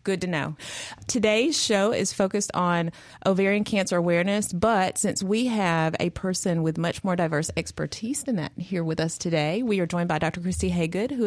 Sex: female